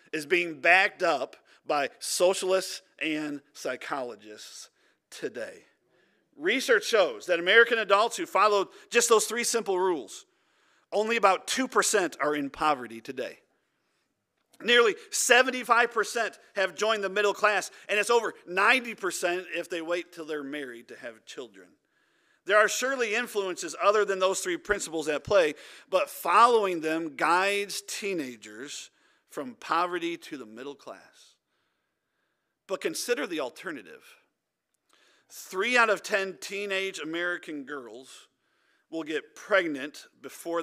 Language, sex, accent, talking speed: English, male, American, 125 wpm